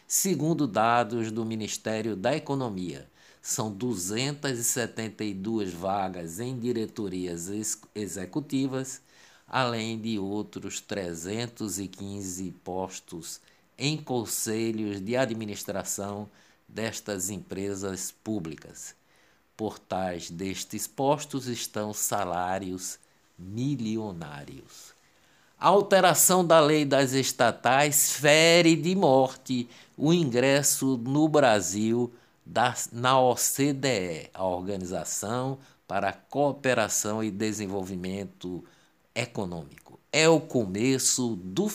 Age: 60-79